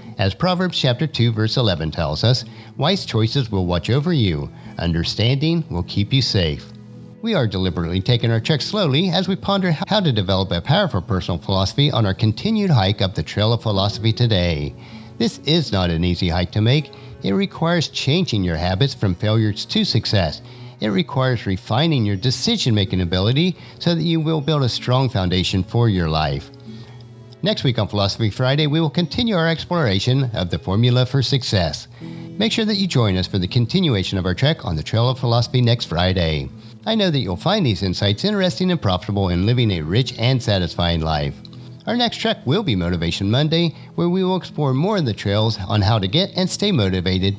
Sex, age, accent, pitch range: male, 50-69, American, 95-160 Hz